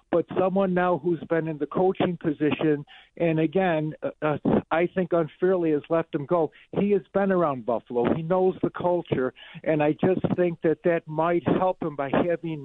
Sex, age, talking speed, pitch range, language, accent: male, 50-69, 185 wpm, 155-185 Hz, English, American